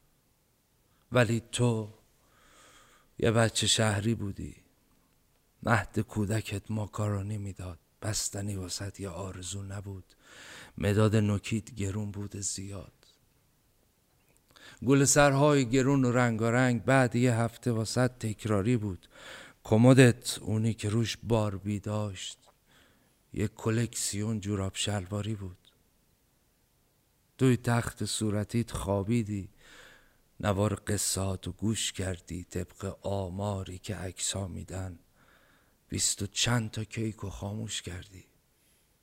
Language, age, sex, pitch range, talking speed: Persian, 50-69, male, 95-115 Hz, 95 wpm